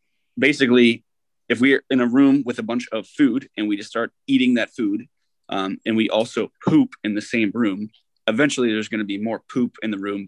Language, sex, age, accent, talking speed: English, male, 20-39, American, 215 wpm